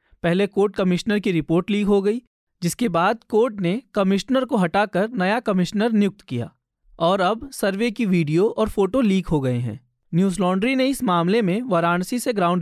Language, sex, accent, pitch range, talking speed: Hindi, male, native, 170-220 Hz, 185 wpm